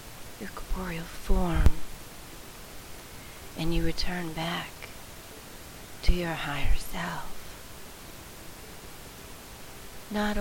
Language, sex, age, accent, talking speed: English, female, 40-59, American, 70 wpm